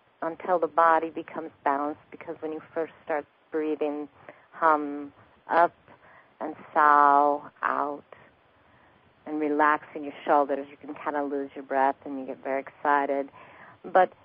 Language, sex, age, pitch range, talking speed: English, female, 50-69, 145-170 Hz, 145 wpm